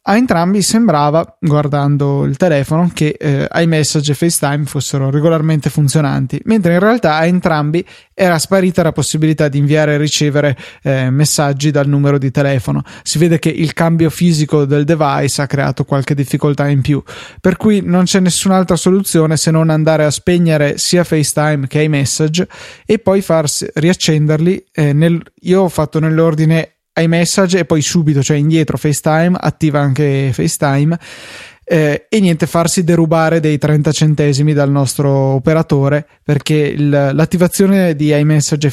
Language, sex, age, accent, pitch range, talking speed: Italian, male, 20-39, native, 145-170 Hz, 155 wpm